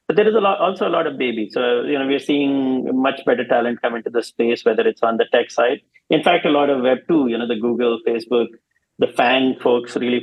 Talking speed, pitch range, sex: 250 wpm, 115-150 Hz, male